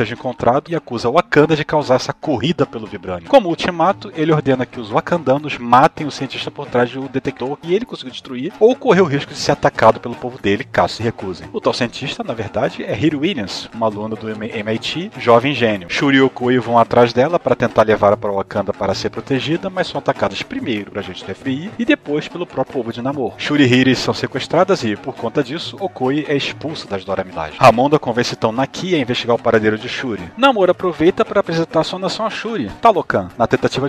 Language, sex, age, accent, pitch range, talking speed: Portuguese, male, 40-59, Brazilian, 125-170 Hz, 220 wpm